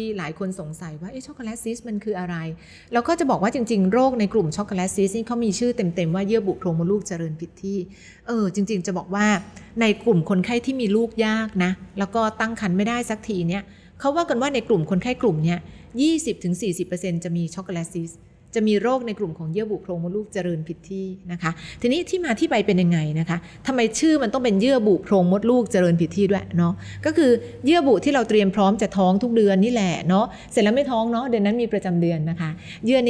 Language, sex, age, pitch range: Thai, female, 30-49, 180-235 Hz